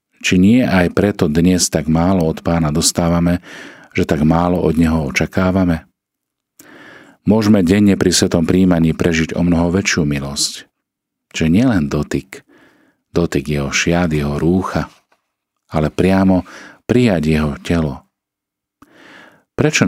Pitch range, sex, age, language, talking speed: 75-90 Hz, male, 40-59, Slovak, 120 wpm